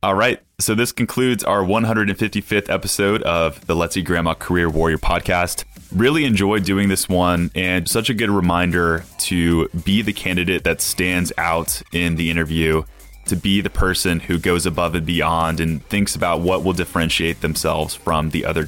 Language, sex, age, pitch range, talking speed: English, male, 20-39, 80-95 Hz, 175 wpm